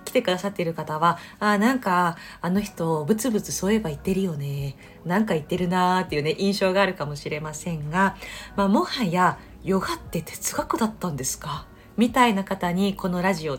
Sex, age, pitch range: female, 40-59, 160-230 Hz